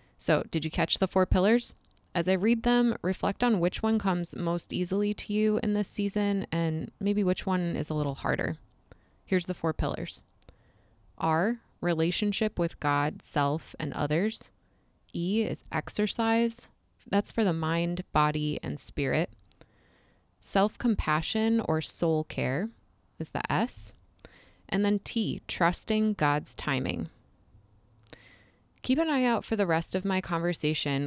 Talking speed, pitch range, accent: 145 wpm, 150-205 Hz, American